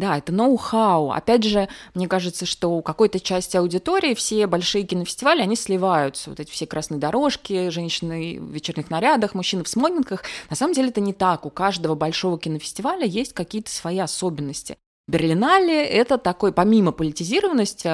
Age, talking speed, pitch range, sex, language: 20-39, 160 wpm, 165-220 Hz, female, Russian